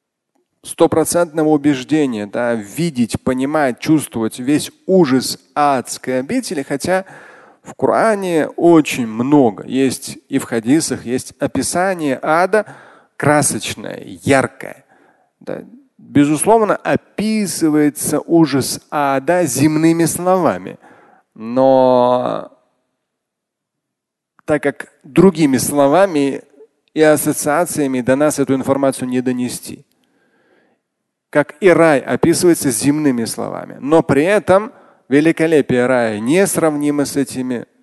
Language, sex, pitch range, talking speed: Russian, male, 130-170 Hz, 90 wpm